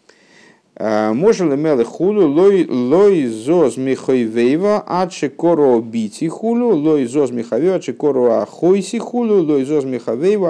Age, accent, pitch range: 50-69, native, 115-175 Hz